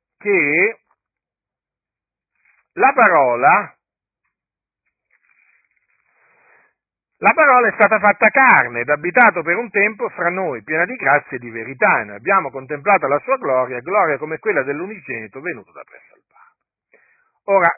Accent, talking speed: native, 130 wpm